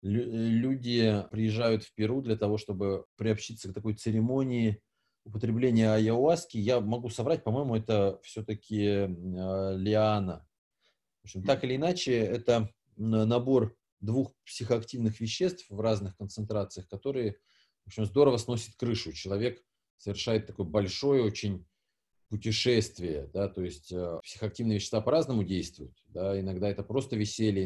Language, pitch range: Russian, 100-120 Hz